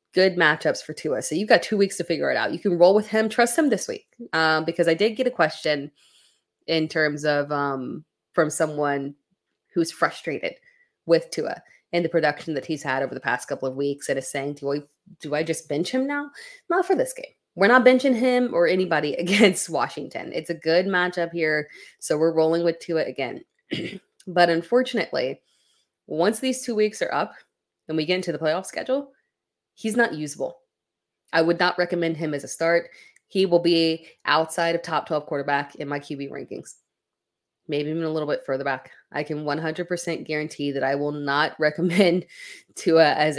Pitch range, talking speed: 145-210 Hz, 195 wpm